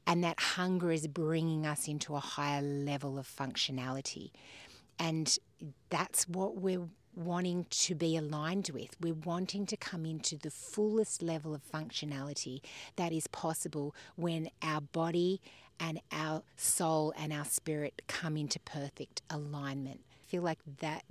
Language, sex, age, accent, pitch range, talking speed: English, female, 40-59, Australian, 145-170 Hz, 145 wpm